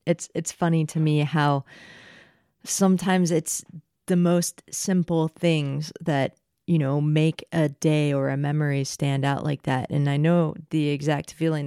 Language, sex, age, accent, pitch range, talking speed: English, female, 30-49, American, 140-165 Hz, 160 wpm